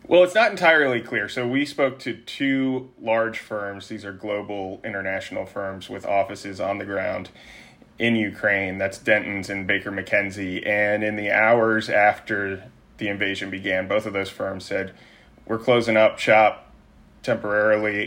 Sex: male